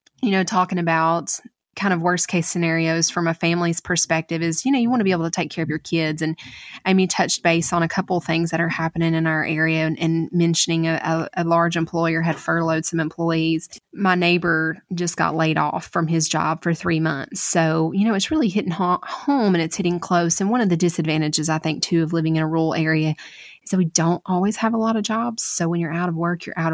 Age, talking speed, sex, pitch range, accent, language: 20-39, 245 wpm, female, 165-185 Hz, American, English